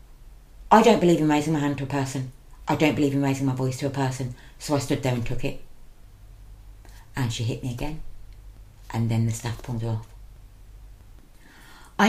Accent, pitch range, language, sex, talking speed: British, 120-155 Hz, English, female, 200 wpm